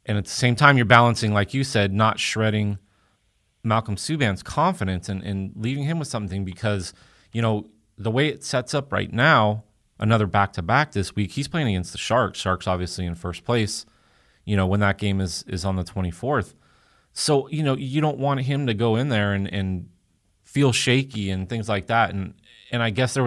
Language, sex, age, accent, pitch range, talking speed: English, male, 30-49, American, 100-130 Hz, 205 wpm